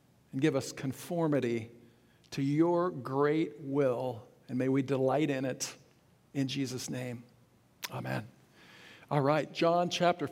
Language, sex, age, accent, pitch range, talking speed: English, male, 50-69, American, 145-185 Hz, 130 wpm